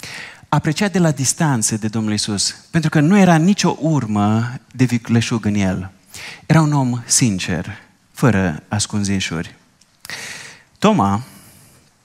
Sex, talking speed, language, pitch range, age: male, 120 wpm, Romanian, 110-160 Hz, 30-49